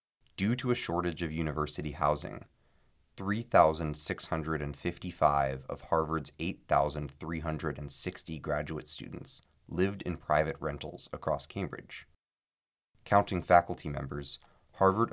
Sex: male